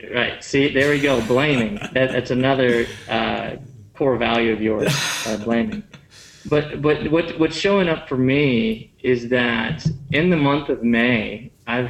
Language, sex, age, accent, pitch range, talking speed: English, male, 30-49, American, 120-145 Hz, 155 wpm